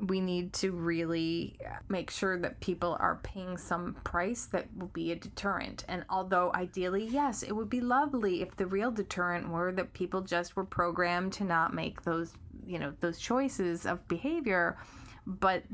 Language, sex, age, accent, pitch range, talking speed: English, female, 20-39, American, 175-195 Hz, 175 wpm